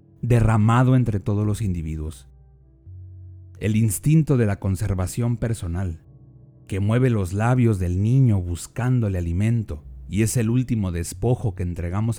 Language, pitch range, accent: Spanish, 95-130 Hz, Mexican